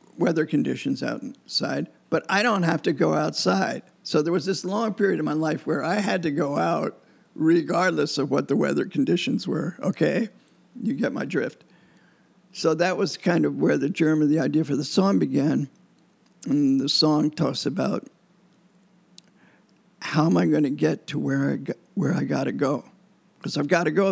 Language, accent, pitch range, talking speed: English, American, 155-190 Hz, 185 wpm